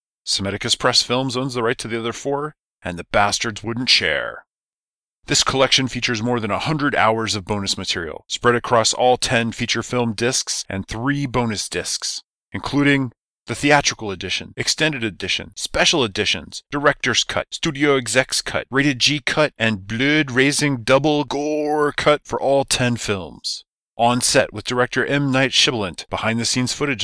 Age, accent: 30-49, American